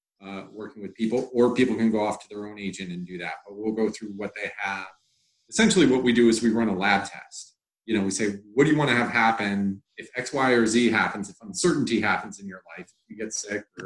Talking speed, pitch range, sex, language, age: 265 wpm, 100-115 Hz, male, English, 30-49